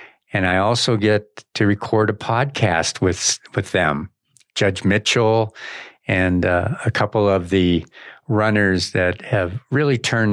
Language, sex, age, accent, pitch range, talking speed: English, male, 50-69, American, 90-115 Hz, 140 wpm